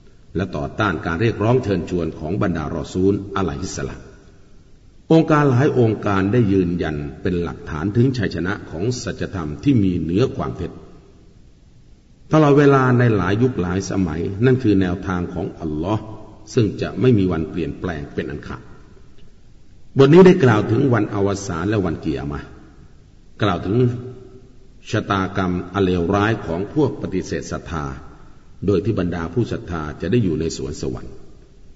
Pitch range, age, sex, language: 85-115 Hz, 60-79, male, Thai